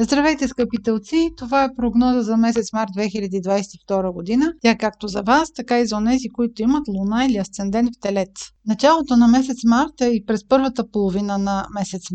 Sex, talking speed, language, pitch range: female, 175 wpm, Bulgarian, 205-255 Hz